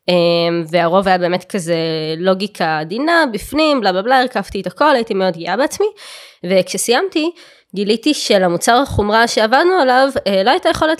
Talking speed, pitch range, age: 135 wpm, 185-255 Hz, 20-39